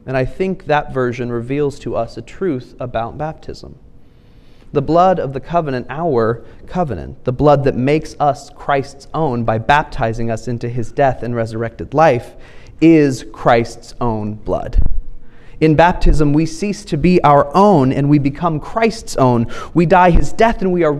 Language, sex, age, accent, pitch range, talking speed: English, male, 30-49, American, 125-160 Hz, 170 wpm